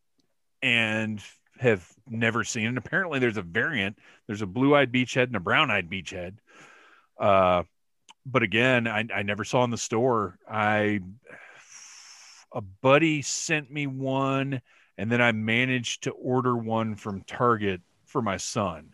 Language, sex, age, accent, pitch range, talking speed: English, male, 40-59, American, 105-130 Hz, 145 wpm